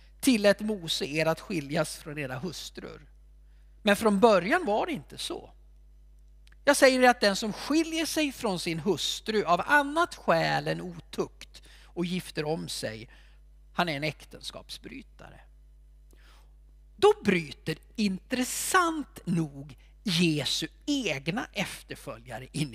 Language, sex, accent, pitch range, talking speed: Swedish, male, native, 145-235 Hz, 125 wpm